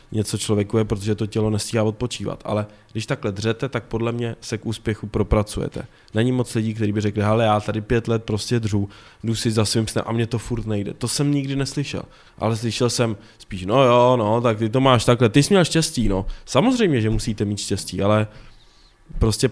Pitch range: 105-120 Hz